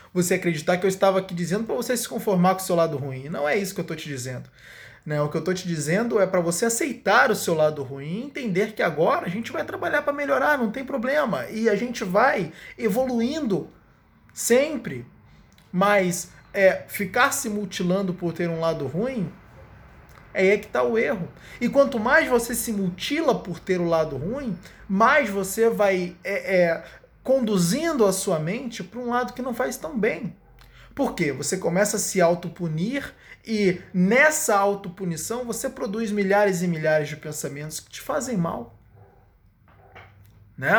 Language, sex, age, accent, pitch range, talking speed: Portuguese, male, 20-39, Brazilian, 170-230 Hz, 180 wpm